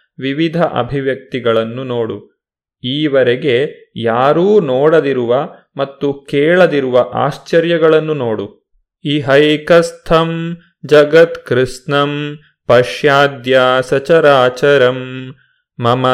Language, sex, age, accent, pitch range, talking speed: Kannada, male, 30-49, native, 125-160 Hz, 55 wpm